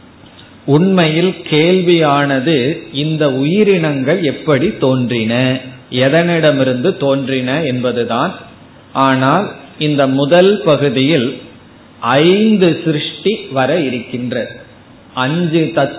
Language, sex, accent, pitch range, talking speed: Tamil, male, native, 130-165 Hz, 45 wpm